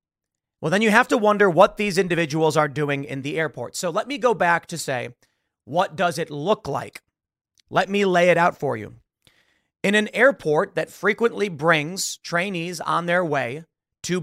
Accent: American